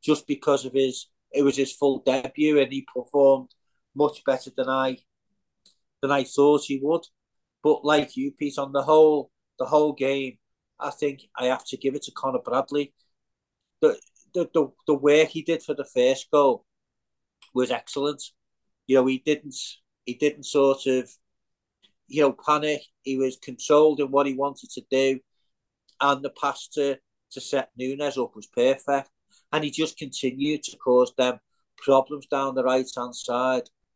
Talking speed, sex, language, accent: 170 wpm, male, English, British